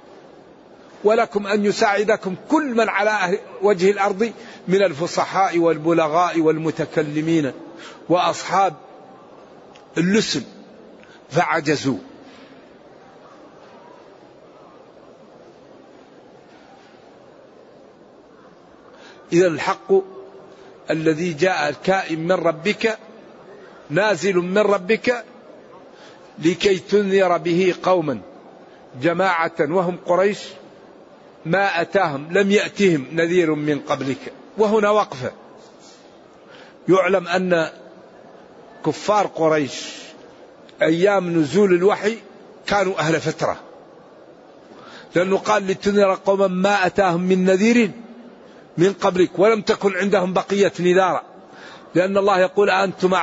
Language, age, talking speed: Arabic, 60-79, 80 wpm